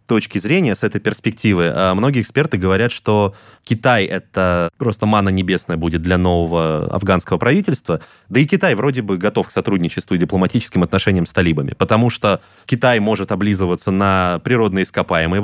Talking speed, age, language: 155 wpm, 20-39, Russian